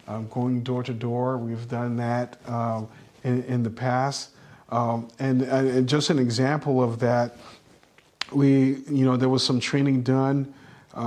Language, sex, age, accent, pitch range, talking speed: English, male, 40-59, American, 120-140 Hz, 155 wpm